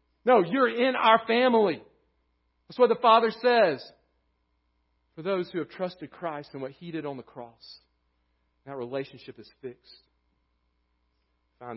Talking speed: 145 wpm